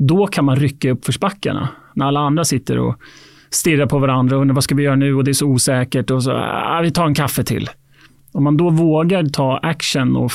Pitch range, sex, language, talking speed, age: 130-170 Hz, male, Swedish, 240 wpm, 30-49